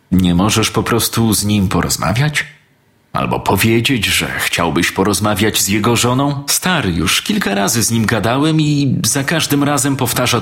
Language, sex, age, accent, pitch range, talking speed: Polish, male, 40-59, native, 100-145 Hz, 155 wpm